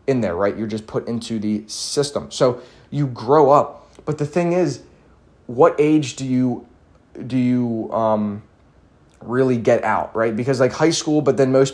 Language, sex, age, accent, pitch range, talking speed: English, male, 20-39, American, 105-135 Hz, 180 wpm